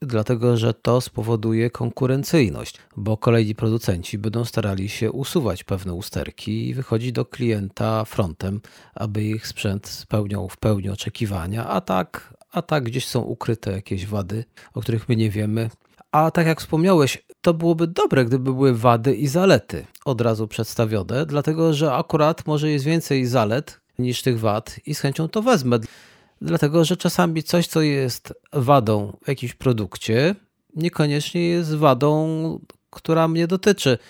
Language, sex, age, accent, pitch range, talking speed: Polish, male, 40-59, native, 115-160 Hz, 150 wpm